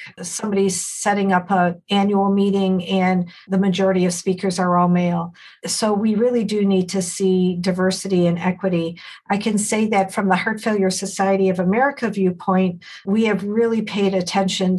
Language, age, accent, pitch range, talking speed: English, 50-69, American, 185-210 Hz, 165 wpm